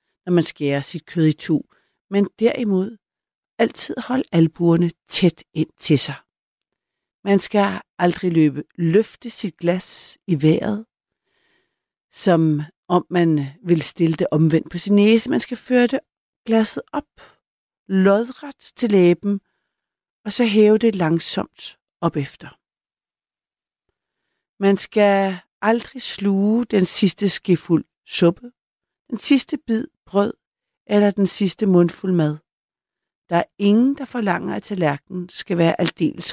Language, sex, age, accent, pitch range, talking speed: Danish, female, 60-79, native, 165-205 Hz, 130 wpm